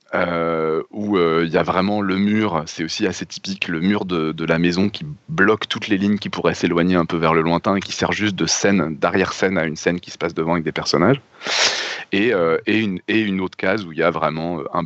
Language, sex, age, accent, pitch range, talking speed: French, male, 30-49, French, 80-100 Hz, 260 wpm